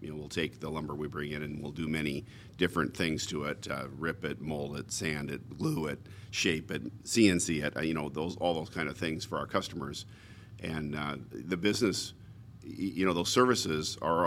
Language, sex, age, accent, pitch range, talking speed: English, male, 50-69, American, 80-95 Hz, 210 wpm